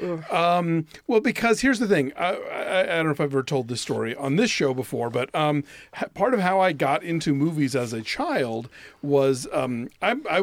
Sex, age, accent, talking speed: male, 40-59, American, 215 wpm